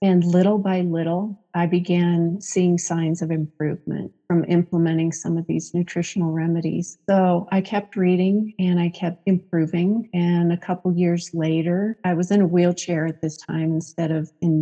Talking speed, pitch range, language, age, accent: 170 wpm, 170-185 Hz, English, 40-59, American